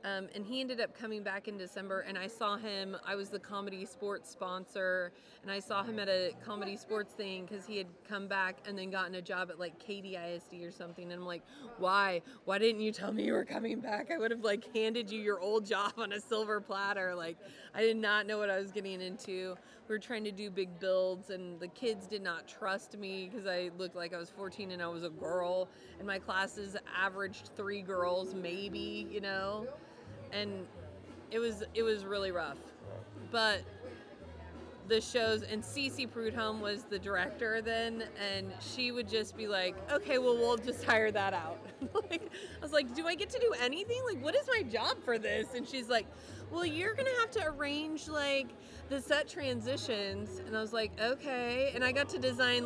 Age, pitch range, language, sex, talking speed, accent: 30-49, 190-235 Hz, English, female, 210 wpm, American